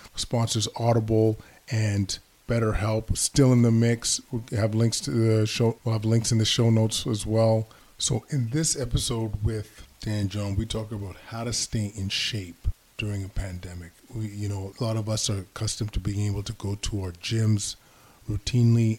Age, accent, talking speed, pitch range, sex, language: 20-39, American, 185 wpm, 95-110 Hz, male, English